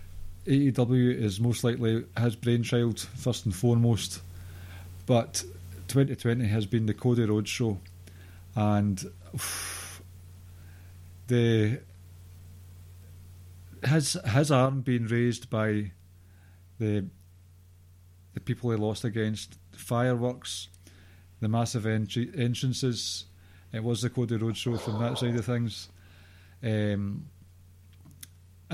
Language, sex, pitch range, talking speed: English, male, 90-120 Hz, 105 wpm